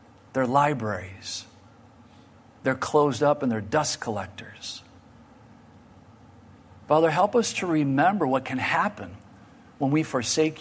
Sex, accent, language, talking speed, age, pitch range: male, American, English, 115 wpm, 50-69, 115-155 Hz